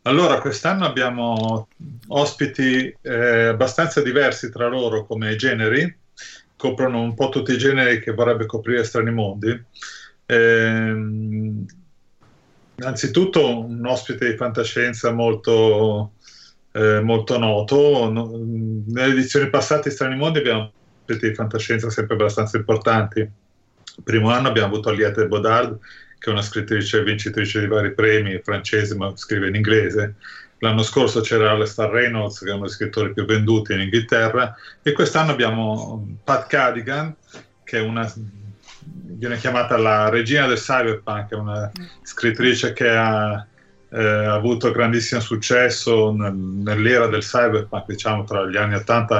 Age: 30-49